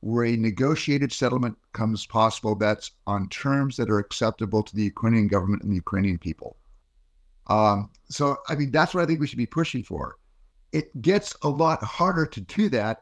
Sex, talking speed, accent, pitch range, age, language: male, 190 wpm, American, 110-135 Hz, 50-69, English